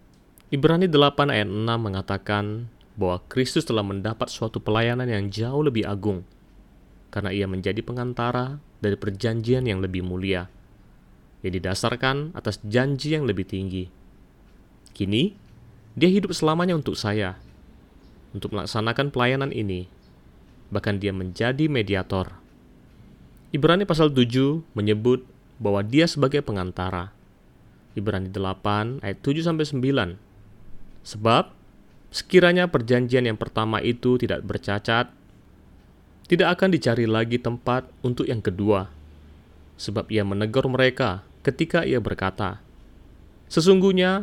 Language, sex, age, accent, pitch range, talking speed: Indonesian, male, 30-49, native, 100-130 Hz, 115 wpm